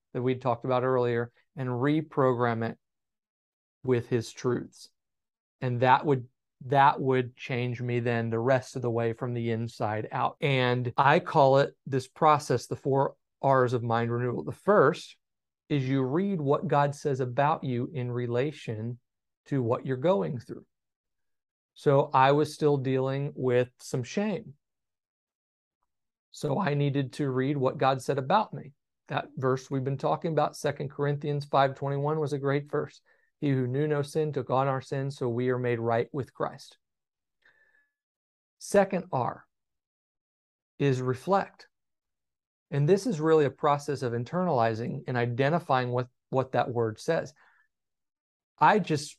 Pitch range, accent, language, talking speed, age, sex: 125-145 Hz, American, English, 150 wpm, 40-59, male